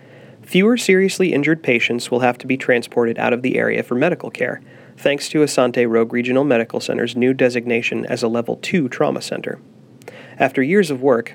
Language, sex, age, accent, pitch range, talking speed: English, male, 30-49, American, 115-140 Hz, 185 wpm